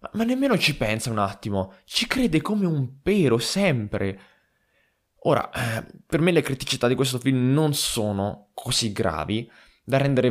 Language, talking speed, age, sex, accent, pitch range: Italian, 155 wpm, 20-39, male, native, 95-130 Hz